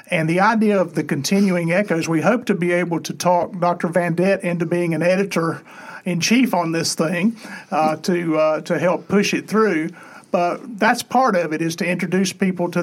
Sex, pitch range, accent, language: male, 165-185 Hz, American, English